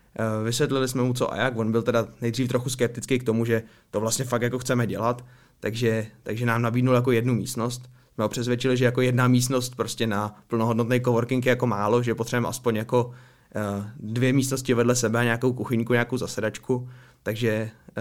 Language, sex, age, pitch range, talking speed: Czech, male, 20-39, 110-125 Hz, 180 wpm